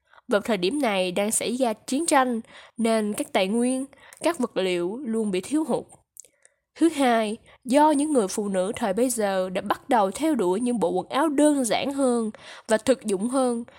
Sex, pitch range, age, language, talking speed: female, 205-275 Hz, 10-29, Vietnamese, 200 wpm